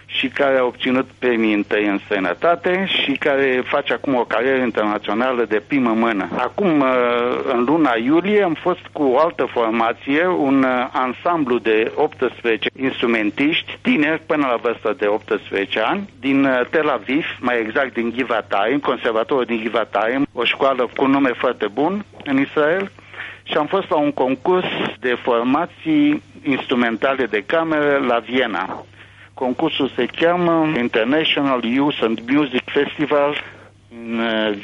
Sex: male